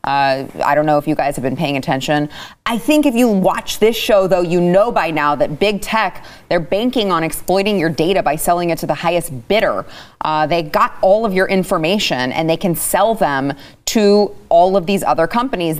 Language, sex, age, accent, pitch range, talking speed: English, female, 30-49, American, 145-190 Hz, 215 wpm